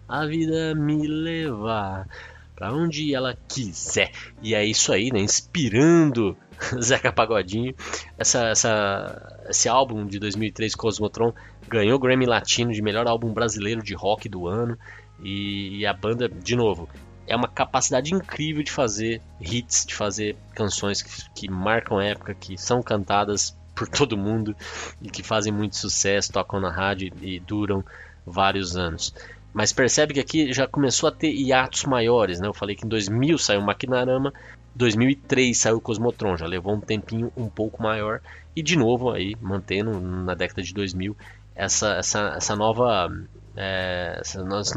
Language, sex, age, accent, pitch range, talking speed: Portuguese, male, 20-39, Brazilian, 100-130 Hz, 160 wpm